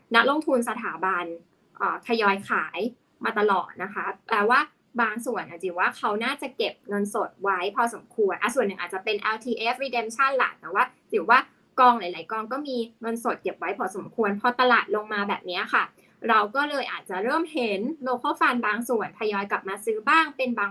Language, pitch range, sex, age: Thai, 205-255 Hz, female, 20-39